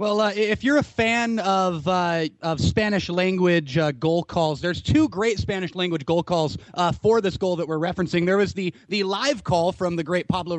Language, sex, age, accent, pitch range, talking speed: English, male, 30-49, American, 165-200 Hz, 215 wpm